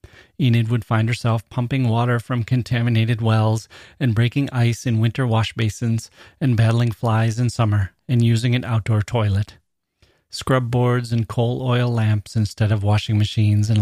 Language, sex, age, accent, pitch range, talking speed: English, male, 30-49, American, 110-125 Hz, 160 wpm